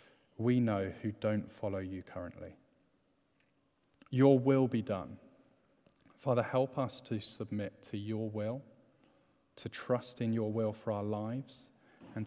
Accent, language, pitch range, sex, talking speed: British, English, 105-130 Hz, male, 135 wpm